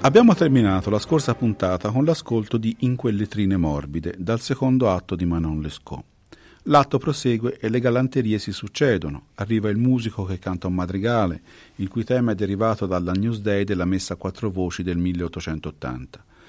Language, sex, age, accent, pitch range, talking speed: Italian, male, 40-59, native, 90-130 Hz, 165 wpm